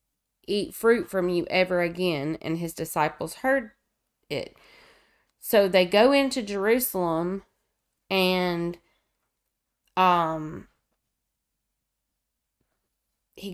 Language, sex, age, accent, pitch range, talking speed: English, female, 30-49, American, 175-215 Hz, 85 wpm